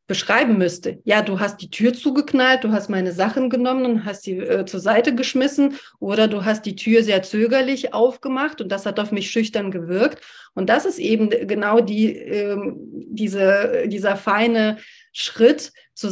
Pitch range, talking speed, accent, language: 195-240 Hz, 175 wpm, German, German